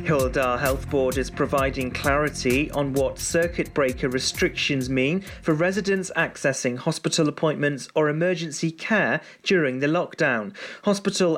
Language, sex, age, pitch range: English, male, 40-59, 135-165 Hz